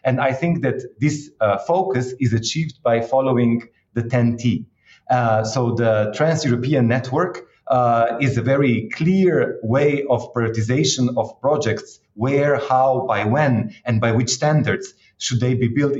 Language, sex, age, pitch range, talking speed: English, male, 30-49, 120-155 Hz, 150 wpm